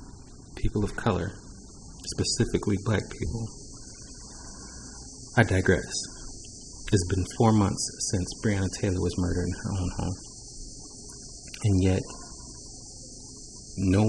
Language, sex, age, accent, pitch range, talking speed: English, male, 30-49, American, 95-115 Hz, 100 wpm